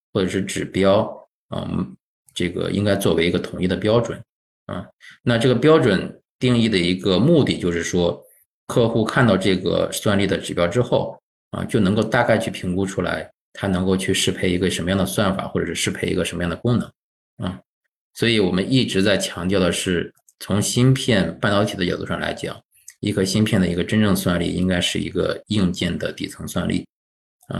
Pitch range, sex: 90-115 Hz, male